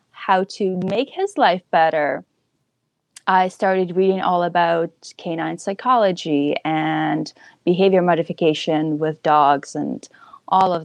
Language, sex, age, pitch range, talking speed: English, female, 20-39, 165-215 Hz, 115 wpm